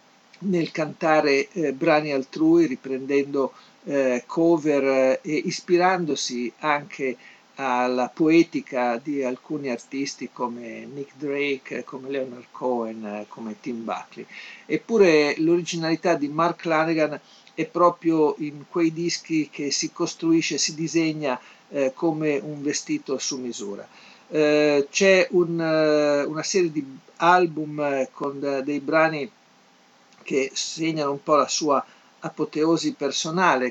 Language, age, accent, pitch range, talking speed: Italian, 50-69, native, 135-165 Hz, 115 wpm